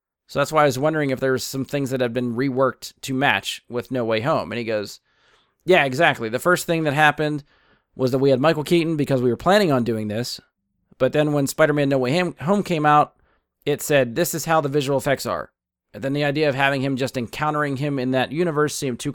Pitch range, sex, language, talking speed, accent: 130-155 Hz, male, English, 240 wpm, American